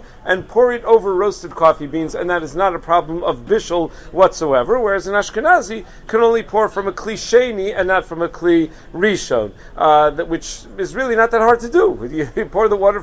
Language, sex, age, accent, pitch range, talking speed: English, male, 50-69, American, 170-225 Hz, 205 wpm